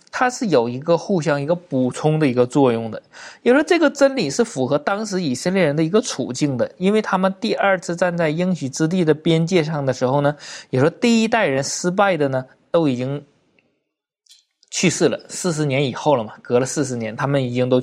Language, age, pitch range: Chinese, 20-39, 135-210 Hz